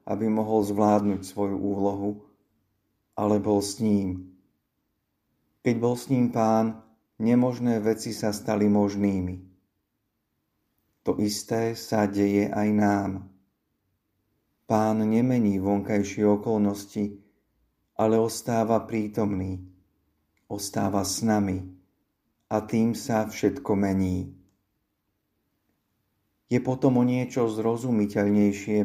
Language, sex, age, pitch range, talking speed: Slovak, male, 50-69, 100-110 Hz, 95 wpm